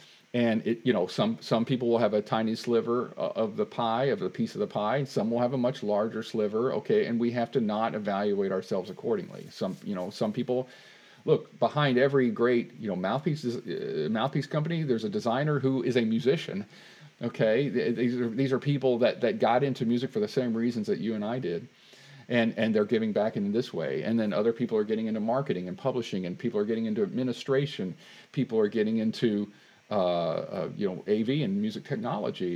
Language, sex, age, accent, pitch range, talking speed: English, male, 40-59, American, 110-140 Hz, 215 wpm